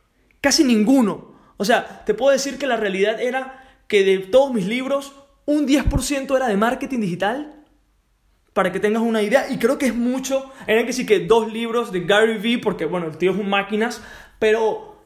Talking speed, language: 195 wpm, Spanish